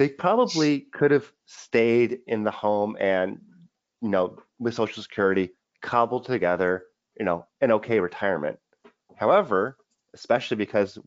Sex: male